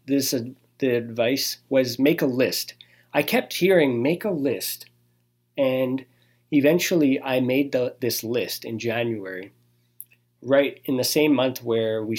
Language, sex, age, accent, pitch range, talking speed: English, male, 40-59, American, 95-145 Hz, 145 wpm